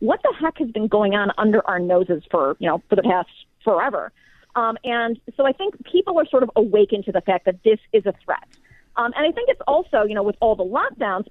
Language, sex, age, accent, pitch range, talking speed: English, female, 40-59, American, 205-300 Hz, 250 wpm